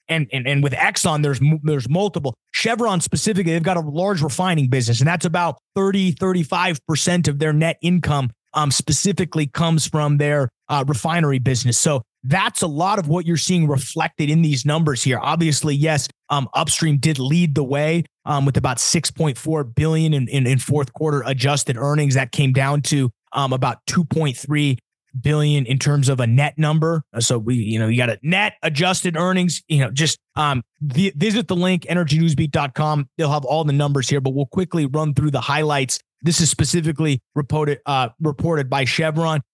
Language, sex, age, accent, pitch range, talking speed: English, male, 30-49, American, 140-165 Hz, 185 wpm